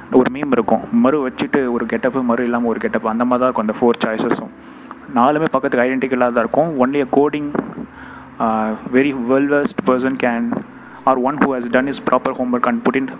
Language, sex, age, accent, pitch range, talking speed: Tamil, male, 20-39, native, 120-130 Hz, 180 wpm